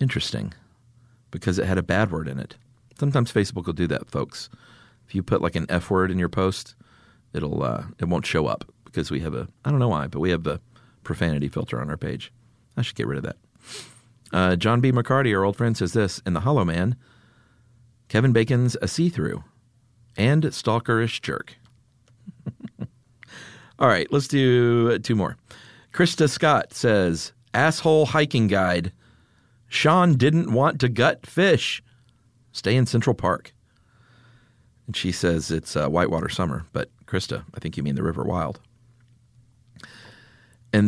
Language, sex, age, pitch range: English, male, 40-59, 95-120 Hz